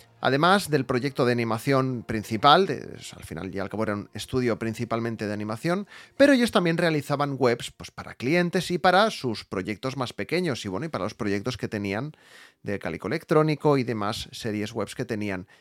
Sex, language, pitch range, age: male, Spanish, 115-175 Hz, 30-49